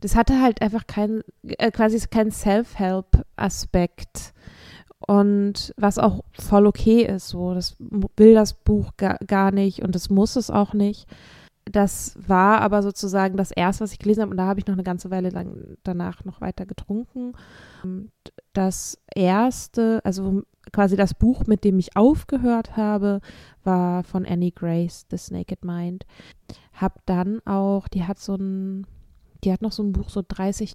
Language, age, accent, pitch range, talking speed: German, 20-39, German, 190-220 Hz, 165 wpm